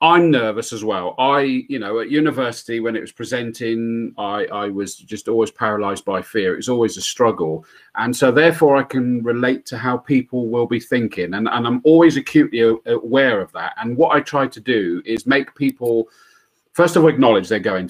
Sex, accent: male, British